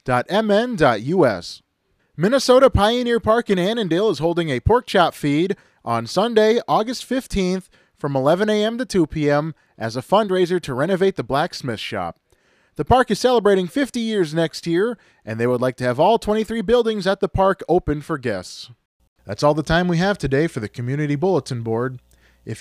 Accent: American